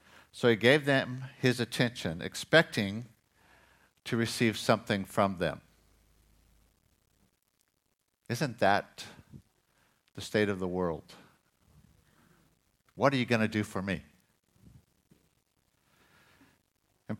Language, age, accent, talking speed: English, 60-79, American, 100 wpm